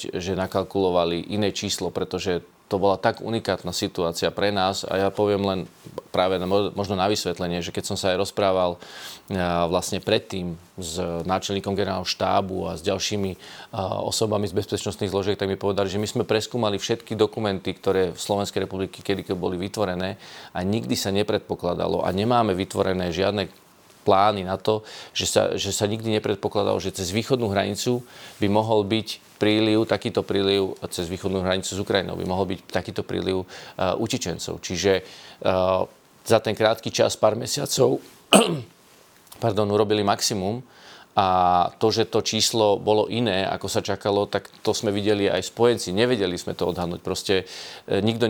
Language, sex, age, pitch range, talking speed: Slovak, male, 30-49, 95-110 Hz, 160 wpm